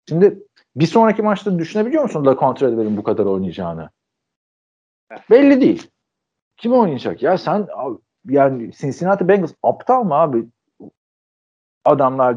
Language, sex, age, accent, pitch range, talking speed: Turkish, male, 50-69, native, 110-185 Hz, 125 wpm